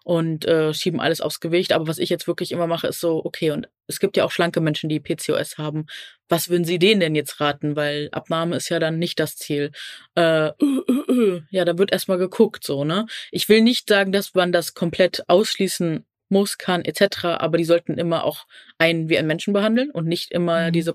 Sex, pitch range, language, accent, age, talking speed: female, 165-195 Hz, German, German, 20-39, 225 wpm